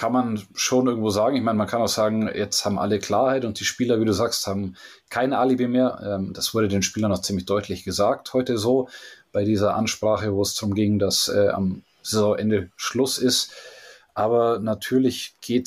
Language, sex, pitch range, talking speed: German, male, 100-115 Hz, 200 wpm